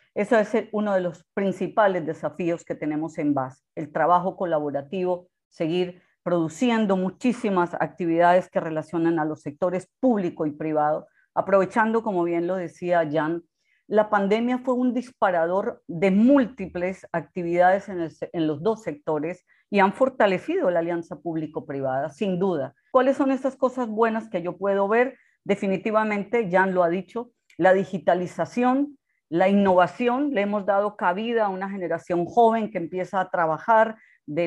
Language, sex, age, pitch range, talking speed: Spanish, female, 40-59, 165-210 Hz, 150 wpm